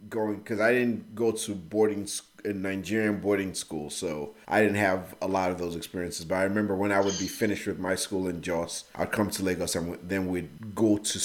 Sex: male